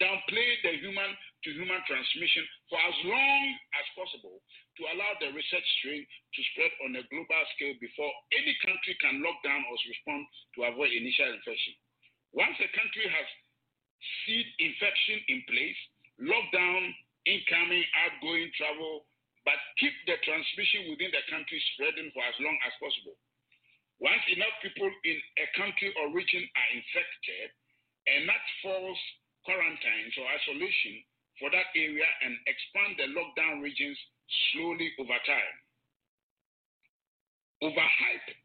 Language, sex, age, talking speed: English, male, 50-69, 135 wpm